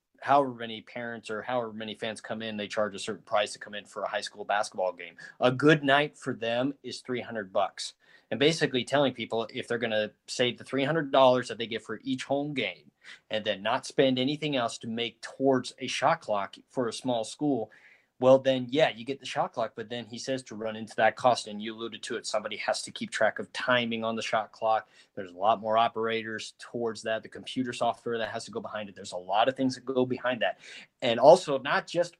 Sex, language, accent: male, English, American